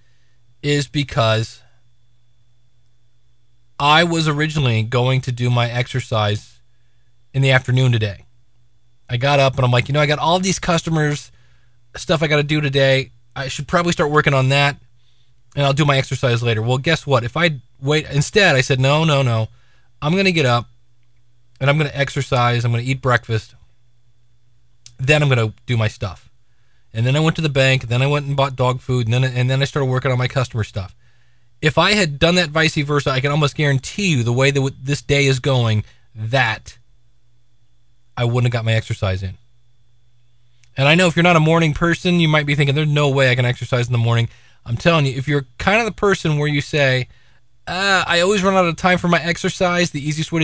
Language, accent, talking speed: English, American, 215 wpm